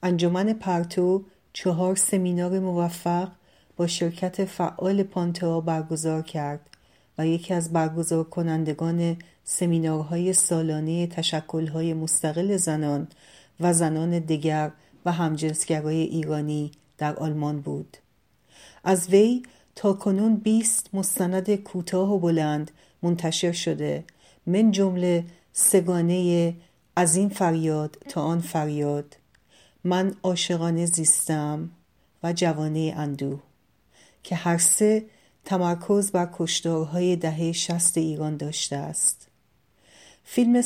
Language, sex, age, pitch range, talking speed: Persian, female, 40-59, 160-180 Hz, 100 wpm